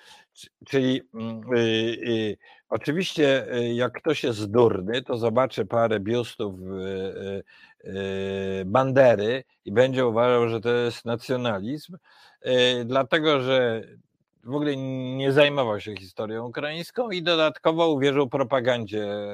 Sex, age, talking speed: male, 50-69, 95 wpm